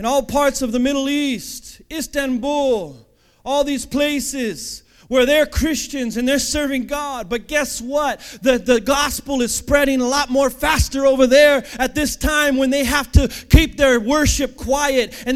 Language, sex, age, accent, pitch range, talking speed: English, male, 30-49, American, 180-290 Hz, 170 wpm